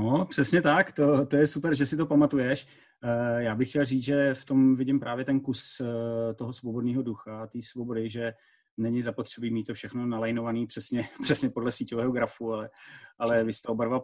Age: 30-49